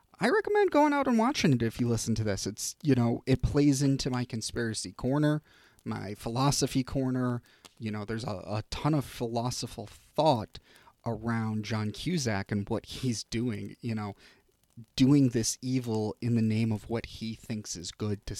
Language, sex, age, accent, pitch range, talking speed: English, male, 30-49, American, 105-125 Hz, 180 wpm